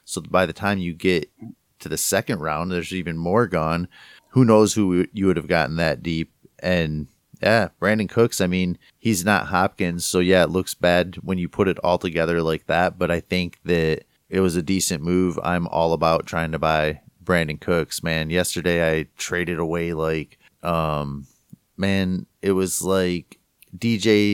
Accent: American